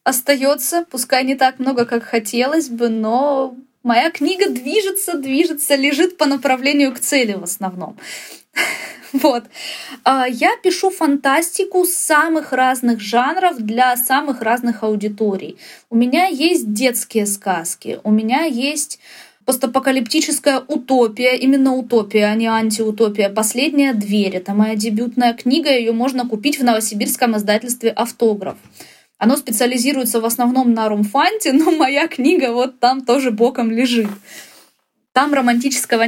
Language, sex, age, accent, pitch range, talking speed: Russian, female, 20-39, native, 225-275 Hz, 125 wpm